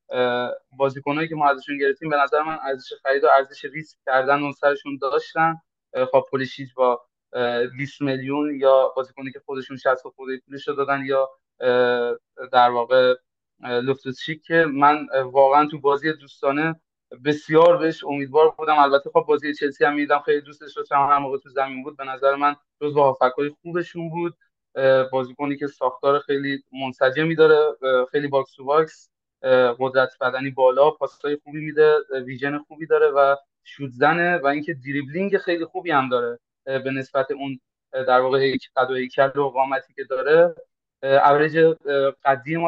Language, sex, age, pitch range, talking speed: Persian, male, 20-39, 135-155 Hz, 150 wpm